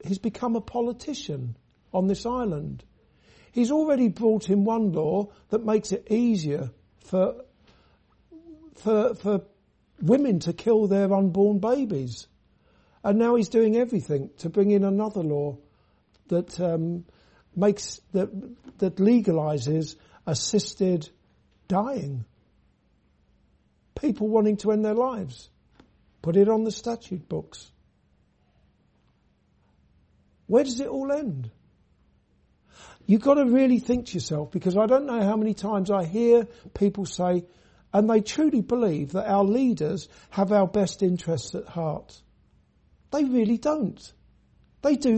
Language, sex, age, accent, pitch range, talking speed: English, male, 60-79, British, 155-230 Hz, 130 wpm